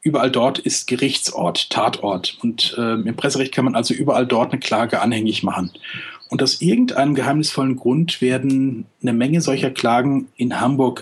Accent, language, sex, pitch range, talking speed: German, German, male, 120-140 Hz, 165 wpm